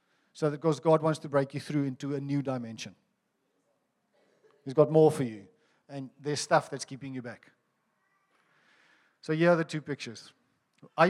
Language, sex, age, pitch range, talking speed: English, male, 50-69, 140-180 Hz, 175 wpm